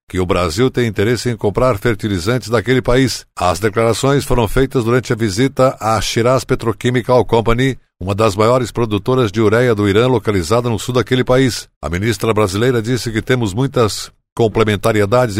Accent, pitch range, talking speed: Brazilian, 110-130 Hz, 165 wpm